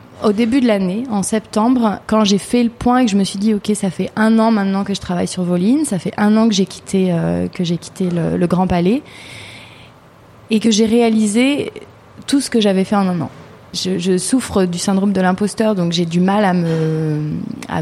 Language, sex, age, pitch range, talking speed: French, female, 30-49, 175-215 Hz, 235 wpm